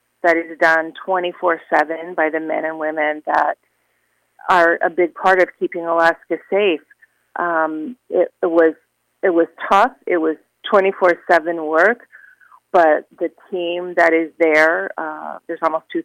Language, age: English, 40-59